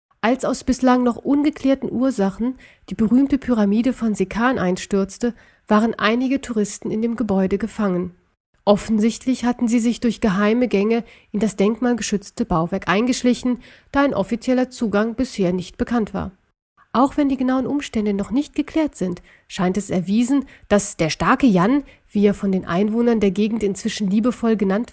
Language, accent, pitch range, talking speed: German, German, 190-245 Hz, 155 wpm